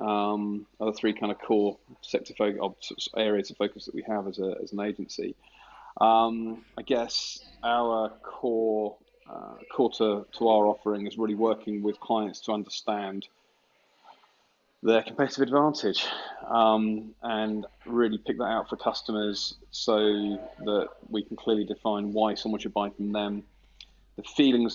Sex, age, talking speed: male, 30-49, 150 wpm